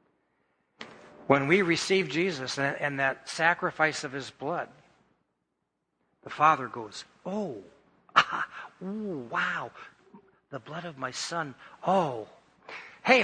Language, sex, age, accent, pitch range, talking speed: English, male, 60-79, American, 150-200 Hz, 105 wpm